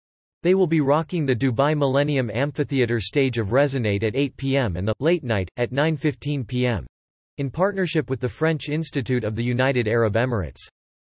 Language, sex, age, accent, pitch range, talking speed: English, male, 40-59, American, 115-150 Hz, 175 wpm